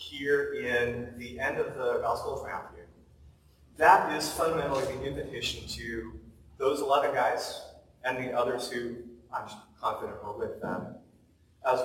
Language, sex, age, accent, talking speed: English, male, 40-59, American, 140 wpm